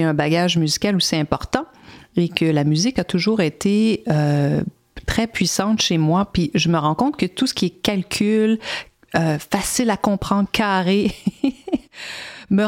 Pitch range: 165-225 Hz